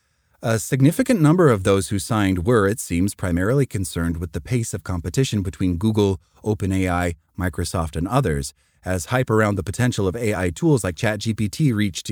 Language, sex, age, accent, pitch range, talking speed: English, male, 30-49, American, 90-130 Hz, 170 wpm